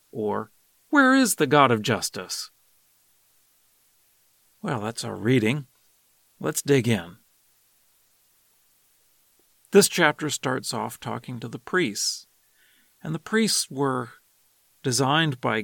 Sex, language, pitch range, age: male, English, 115-150 Hz, 40-59